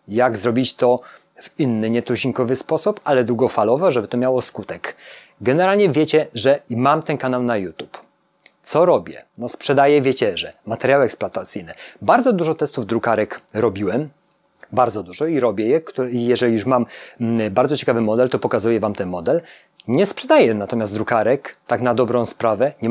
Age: 30-49